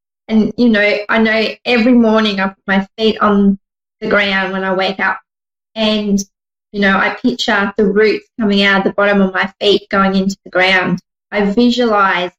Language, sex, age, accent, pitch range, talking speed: English, female, 20-39, Australian, 195-215 Hz, 190 wpm